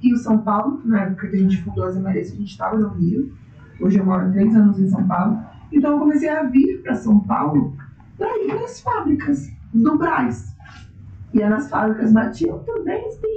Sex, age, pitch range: female, 20-39, 210-305 Hz